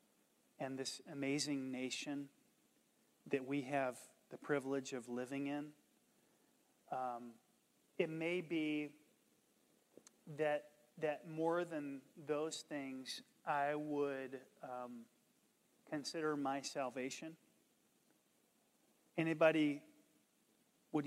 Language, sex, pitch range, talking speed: English, male, 135-165 Hz, 85 wpm